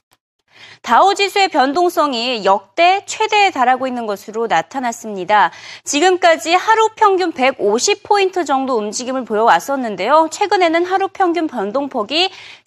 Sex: female